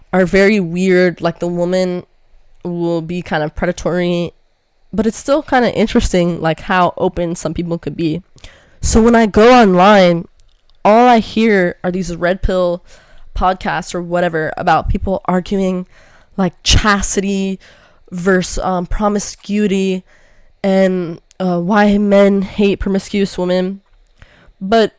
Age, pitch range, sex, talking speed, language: 10-29, 175-220 Hz, female, 130 wpm, English